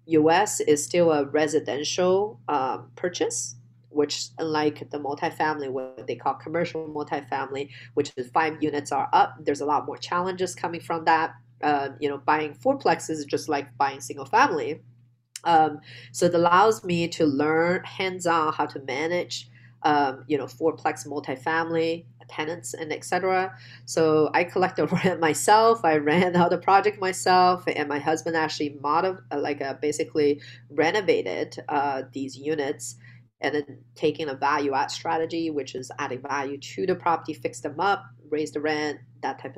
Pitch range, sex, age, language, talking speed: 140-165 Hz, female, 30-49, English, 160 wpm